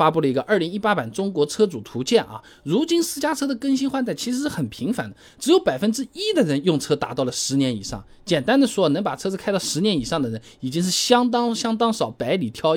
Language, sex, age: Chinese, male, 20-39